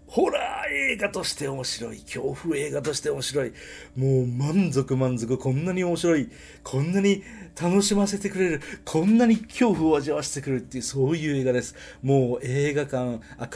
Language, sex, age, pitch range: Japanese, male, 40-59, 110-180 Hz